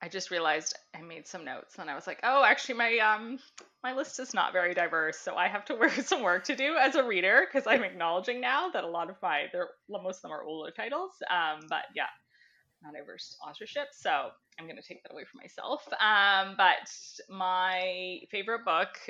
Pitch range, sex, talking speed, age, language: 175-270 Hz, female, 215 wpm, 20-39, English